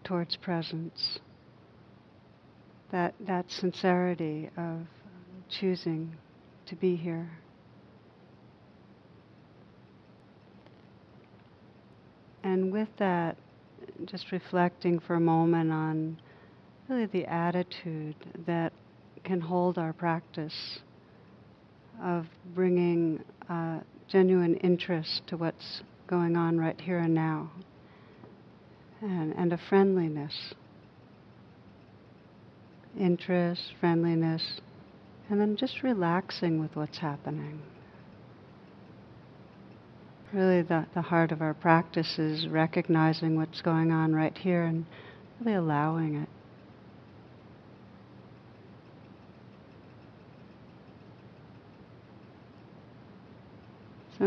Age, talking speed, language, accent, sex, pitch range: 60-79, 80 wpm, English, American, female, 160-180 Hz